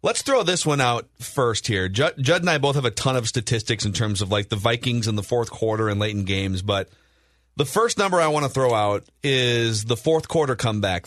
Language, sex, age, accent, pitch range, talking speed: English, male, 30-49, American, 110-155 Hz, 245 wpm